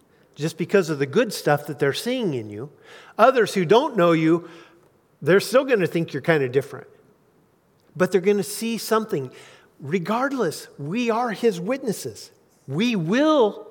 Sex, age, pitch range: male, 50-69, 150-225 Hz